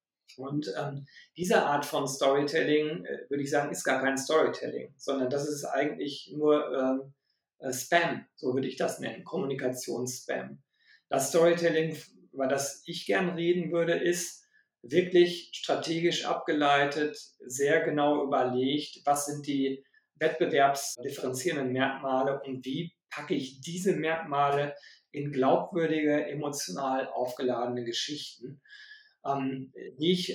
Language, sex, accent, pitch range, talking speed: German, male, German, 135-170 Hz, 120 wpm